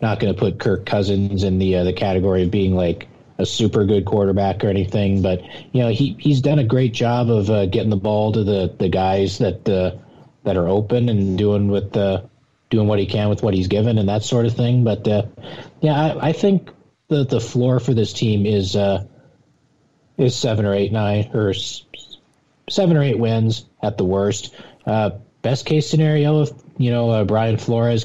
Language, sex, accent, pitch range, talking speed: English, male, American, 100-120 Hz, 205 wpm